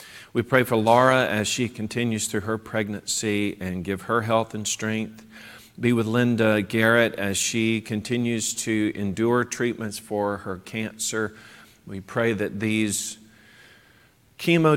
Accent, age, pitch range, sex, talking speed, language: American, 40-59, 100-115 Hz, male, 140 wpm, English